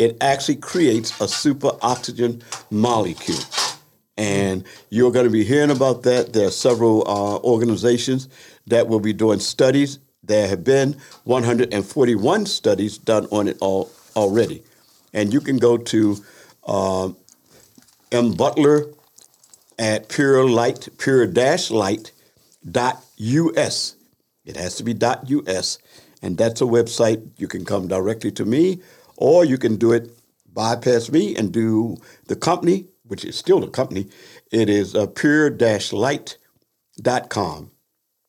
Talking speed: 125 wpm